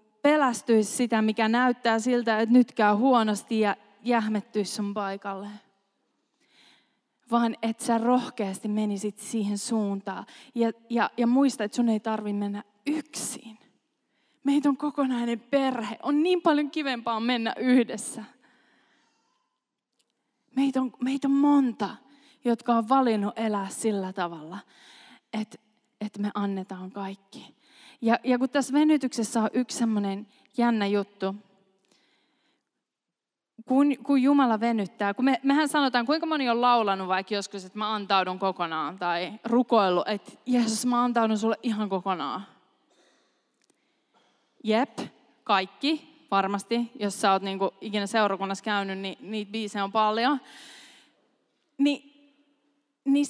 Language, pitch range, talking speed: Finnish, 205-270 Hz, 125 wpm